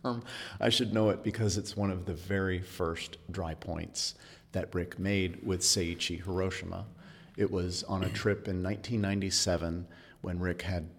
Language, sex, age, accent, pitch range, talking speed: English, male, 40-59, American, 85-105 Hz, 160 wpm